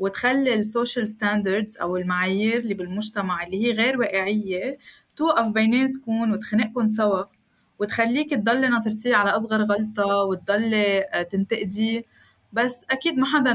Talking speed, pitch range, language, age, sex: 125 wpm, 200-245 Hz, Arabic, 20-39, female